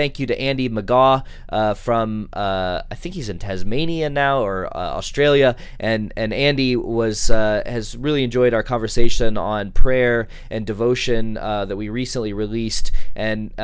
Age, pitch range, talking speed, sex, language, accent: 20-39, 100-125 Hz, 165 wpm, male, English, American